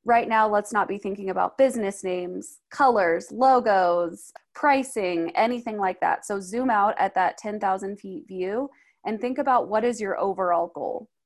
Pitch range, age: 185-245 Hz, 20-39